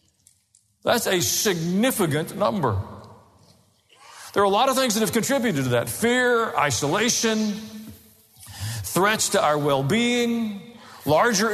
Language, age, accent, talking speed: English, 50-69, American, 120 wpm